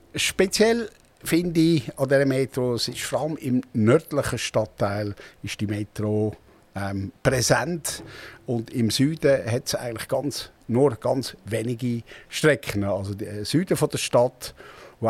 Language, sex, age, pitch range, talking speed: German, male, 60-79, 105-135 Hz, 145 wpm